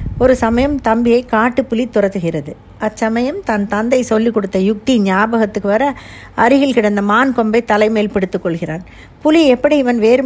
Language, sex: Tamil, female